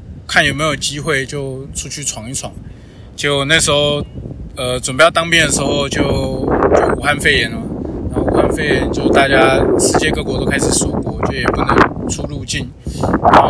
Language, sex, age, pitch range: Chinese, male, 20-39, 120-160 Hz